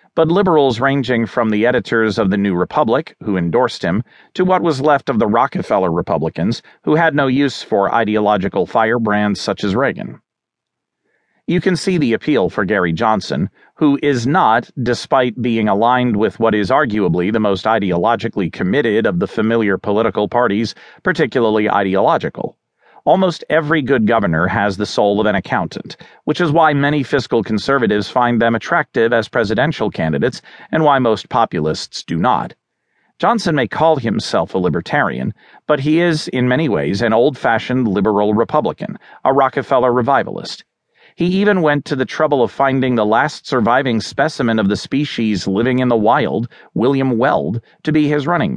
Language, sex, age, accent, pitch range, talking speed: English, male, 40-59, American, 110-150 Hz, 165 wpm